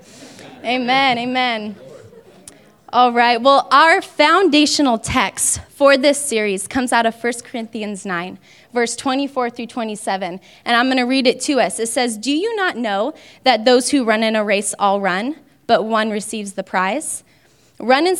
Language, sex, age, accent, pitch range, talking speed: English, female, 10-29, American, 220-280 Hz, 170 wpm